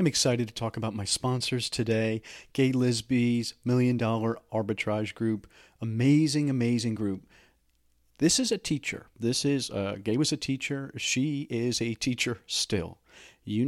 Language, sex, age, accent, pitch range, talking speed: English, male, 40-59, American, 105-125 Hz, 150 wpm